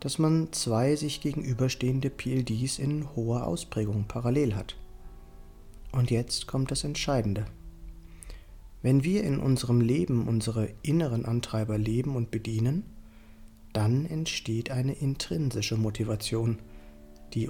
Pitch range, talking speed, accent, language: 105-130 Hz, 115 wpm, German, German